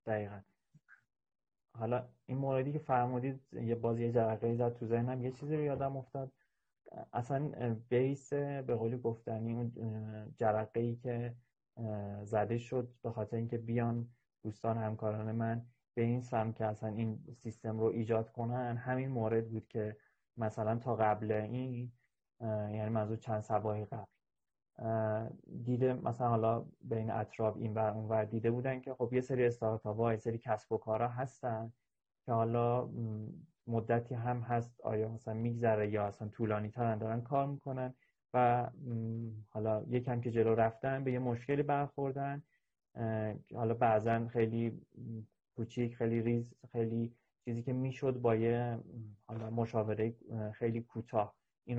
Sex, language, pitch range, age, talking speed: male, Persian, 110-125 Hz, 30-49, 145 wpm